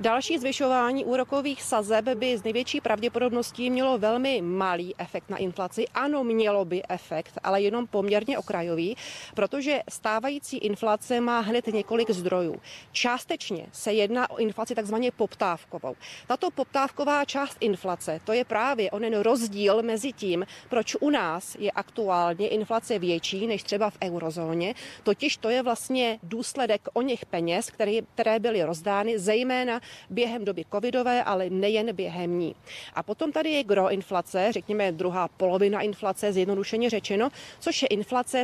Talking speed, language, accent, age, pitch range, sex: 145 wpm, Czech, native, 30-49, 195-240 Hz, female